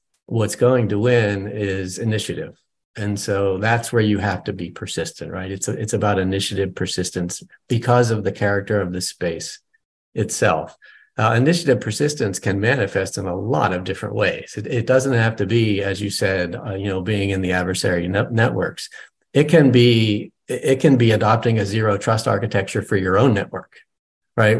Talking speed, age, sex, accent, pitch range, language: 185 wpm, 40-59, male, American, 100-120 Hz, Ukrainian